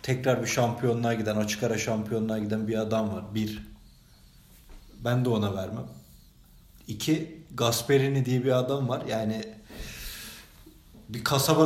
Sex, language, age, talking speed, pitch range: male, Turkish, 40-59, 130 wpm, 115-140 Hz